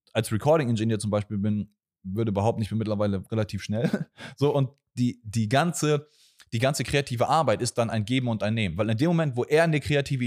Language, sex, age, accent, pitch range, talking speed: German, male, 30-49, German, 105-130 Hz, 200 wpm